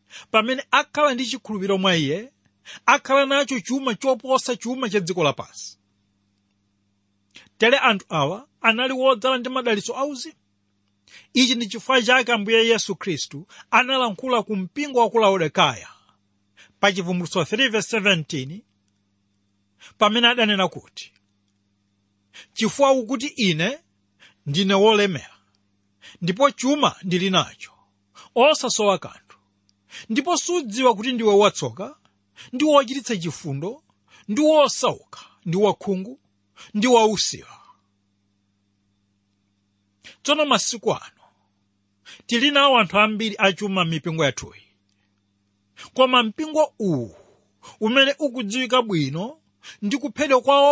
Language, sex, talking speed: English, male, 100 wpm